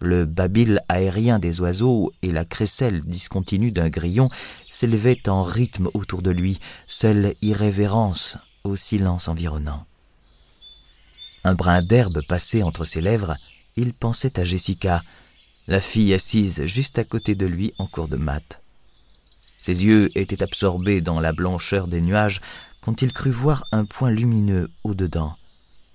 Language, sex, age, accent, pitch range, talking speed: French, male, 30-49, French, 85-110 Hz, 145 wpm